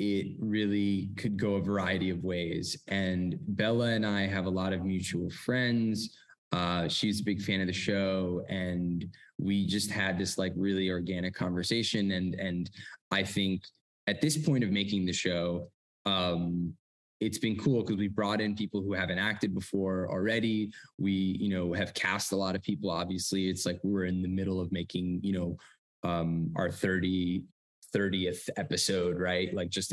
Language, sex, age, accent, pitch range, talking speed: English, male, 20-39, American, 90-110 Hz, 175 wpm